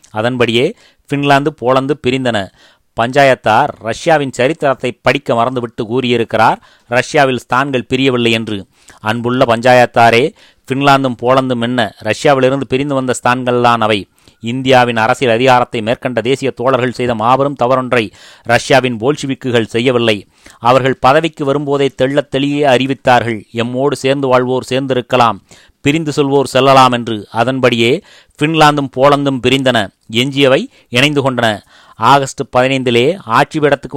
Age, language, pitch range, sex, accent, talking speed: 30-49, Tamil, 120-140 Hz, male, native, 105 wpm